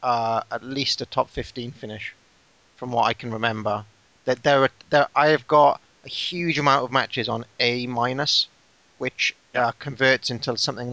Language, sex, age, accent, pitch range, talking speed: English, male, 30-49, British, 110-135 Hz, 170 wpm